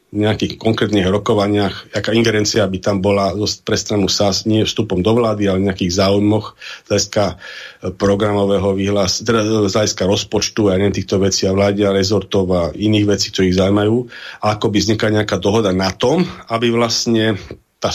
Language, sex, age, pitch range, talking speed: Slovak, male, 40-59, 95-110 Hz, 155 wpm